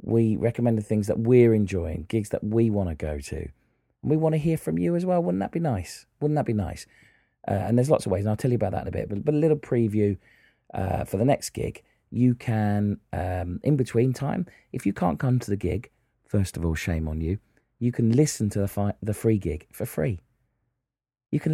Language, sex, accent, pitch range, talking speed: English, male, British, 100-140 Hz, 240 wpm